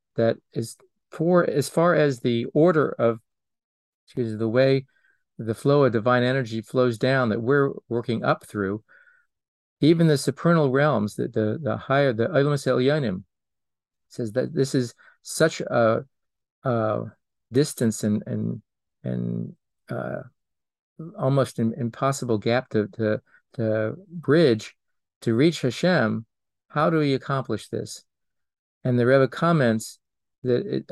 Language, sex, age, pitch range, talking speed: English, male, 50-69, 110-140 Hz, 130 wpm